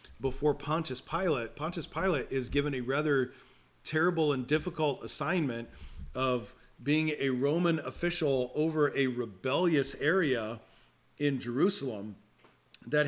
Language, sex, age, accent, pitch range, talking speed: English, male, 40-59, American, 125-155 Hz, 115 wpm